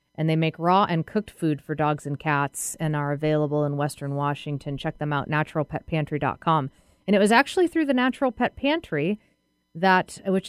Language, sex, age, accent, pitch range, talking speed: English, female, 30-49, American, 150-185 Hz, 185 wpm